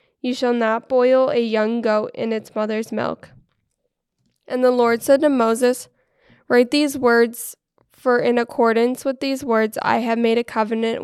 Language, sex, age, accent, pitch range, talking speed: English, female, 10-29, American, 220-245 Hz, 170 wpm